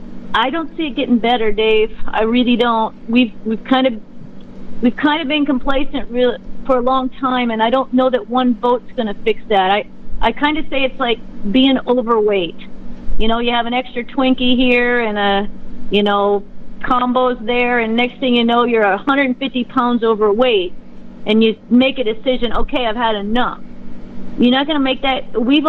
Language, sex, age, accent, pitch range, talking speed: English, female, 40-59, American, 225-260 Hz, 185 wpm